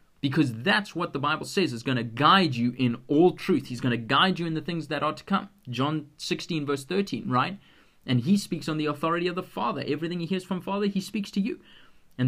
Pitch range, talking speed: 120-175 Hz, 245 wpm